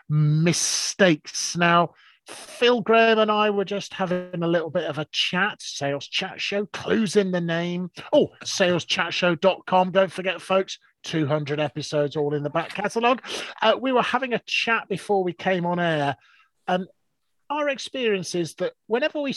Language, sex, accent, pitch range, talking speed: English, male, British, 150-195 Hz, 160 wpm